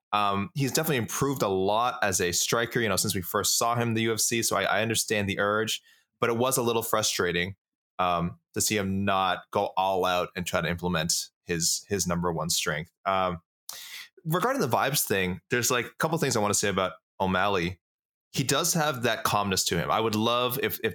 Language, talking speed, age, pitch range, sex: English, 220 wpm, 20-39, 90-110 Hz, male